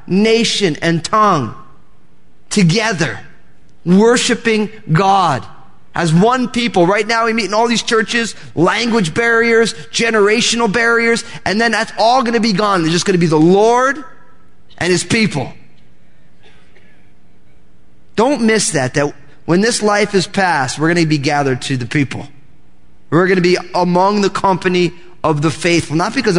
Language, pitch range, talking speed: English, 145-210 Hz, 155 wpm